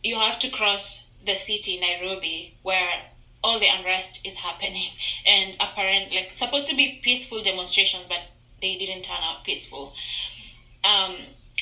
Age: 20-39